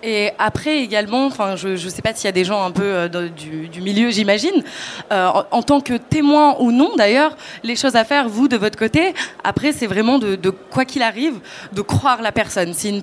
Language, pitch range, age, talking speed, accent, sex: French, 210-265 Hz, 20-39, 235 wpm, French, female